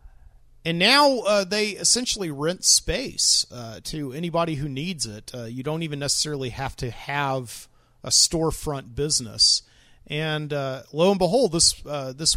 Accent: American